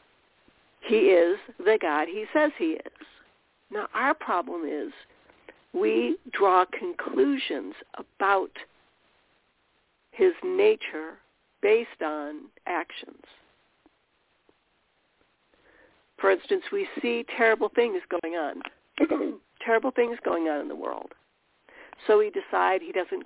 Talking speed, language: 105 wpm, English